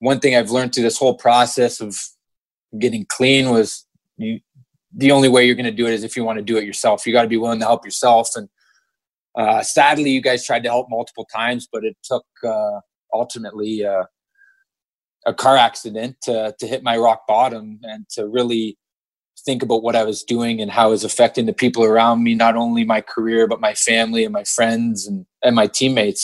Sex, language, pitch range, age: male, English, 115-130 Hz, 20-39